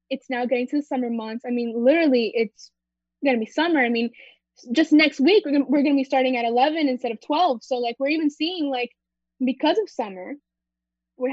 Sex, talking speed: female, 220 wpm